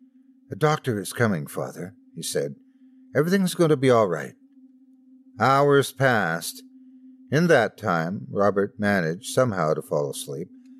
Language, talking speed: English, 135 wpm